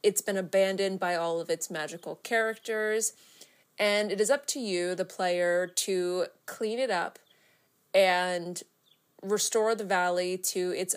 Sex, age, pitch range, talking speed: female, 20-39, 180-225 Hz, 150 wpm